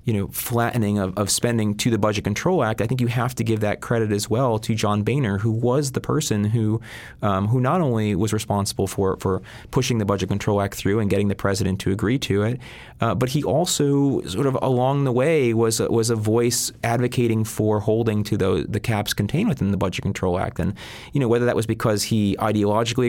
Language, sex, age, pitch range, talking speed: English, male, 30-49, 105-125 Hz, 225 wpm